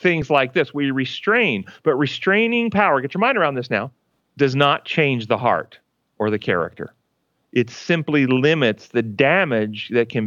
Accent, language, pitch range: American, English, 125-165 Hz